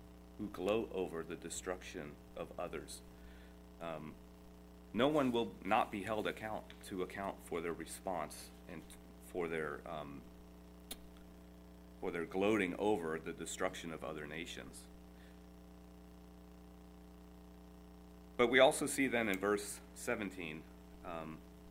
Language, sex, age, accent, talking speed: English, male, 40-59, American, 115 wpm